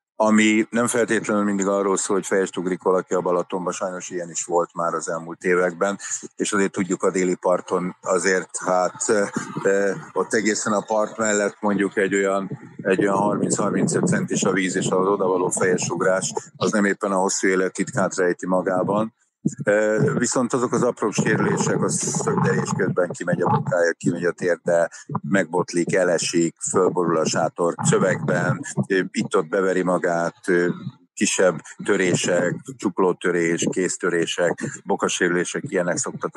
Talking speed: 140 wpm